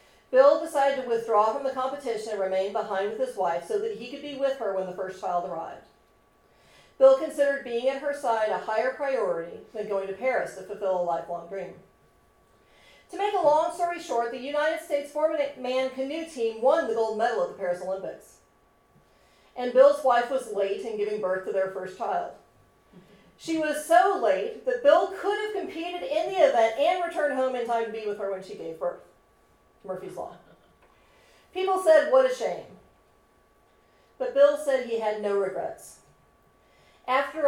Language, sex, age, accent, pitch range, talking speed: English, female, 40-59, American, 205-290 Hz, 185 wpm